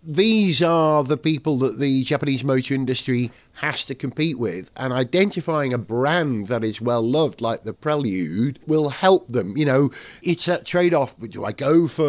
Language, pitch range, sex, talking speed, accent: English, 130-180 Hz, male, 175 wpm, British